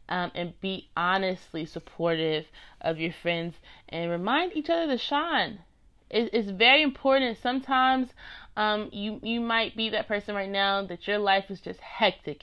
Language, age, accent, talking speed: English, 20-39, American, 165 wpm